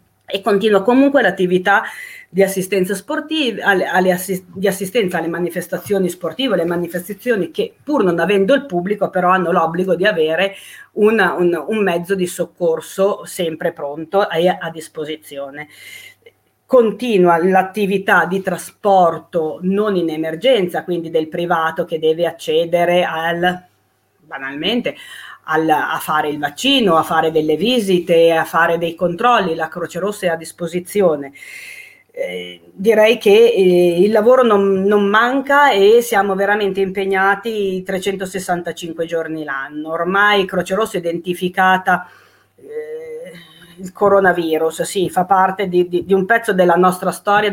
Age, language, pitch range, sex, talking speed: 30-49, Italian, 170-205 Hz, female, 125 wpm